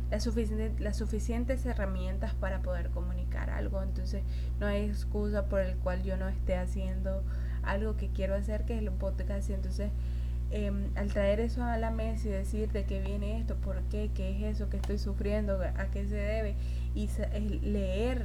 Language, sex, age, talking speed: Spanish, female, 20-39, 185 wpm